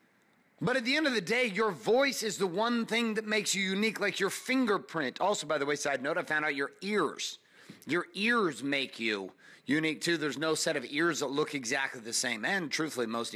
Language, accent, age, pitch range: English, American, 30-49, 175-240 Hz